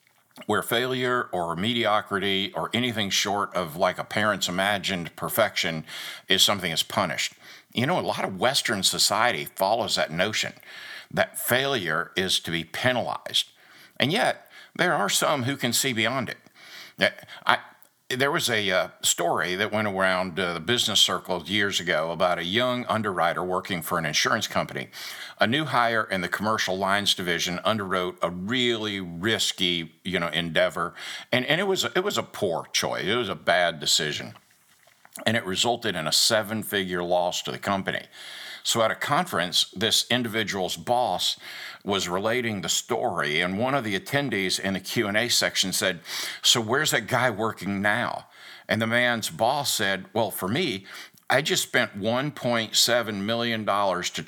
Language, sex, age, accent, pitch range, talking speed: English, male, 60-79, American, 90-115 Hz, 165 wpm